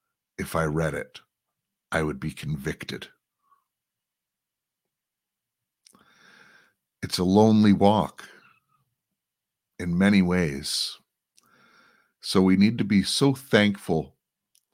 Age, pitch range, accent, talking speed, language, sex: 60-79, 85-110 Hz, American, 90 wpm, English, male